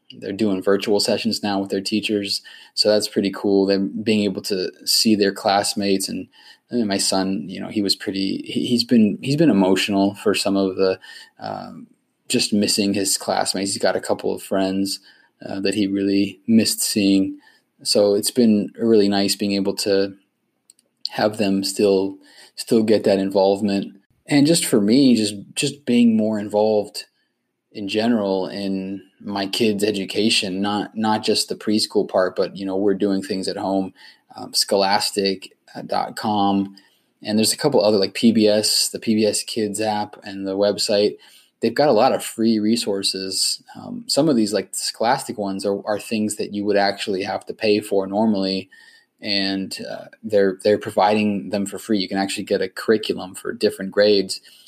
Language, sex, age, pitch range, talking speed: English, male, 20-39, 100-110 Hz, 175 wpm